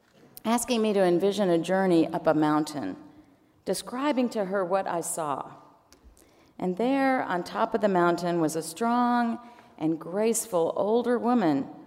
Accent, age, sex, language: American, 40-59, female, English